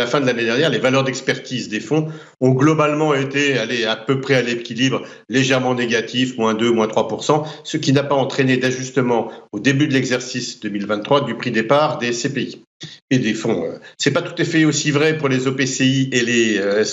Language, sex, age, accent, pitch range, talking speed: French, male, 50-69, French, 120-150 Hz, 210 wpm